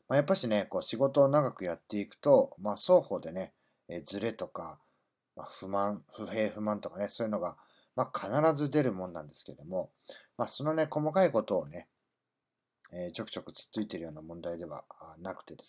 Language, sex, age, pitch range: Japanese, male, 40-59, 100-145 Hz